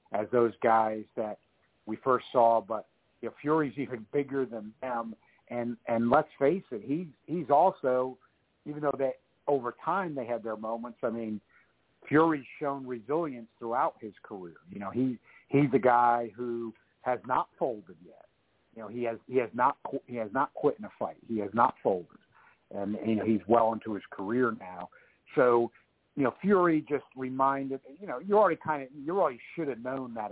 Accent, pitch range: American, 110-135 Hz